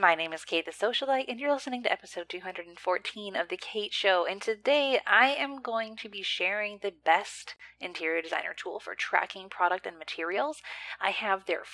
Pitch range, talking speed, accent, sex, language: 180-240 Hz, 190 wpm, American, female, English